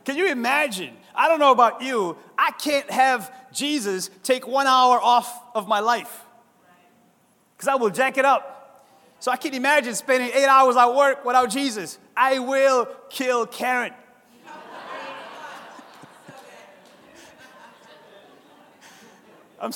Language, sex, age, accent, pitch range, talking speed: English, male, 30-49, American, 190-255 Hz, 125 wpm